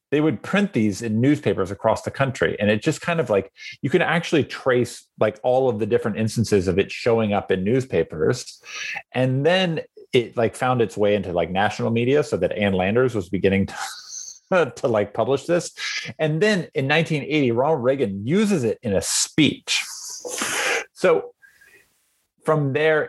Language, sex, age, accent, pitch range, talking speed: English, male, 30-49, American, 100-155 Hz, 175 wpm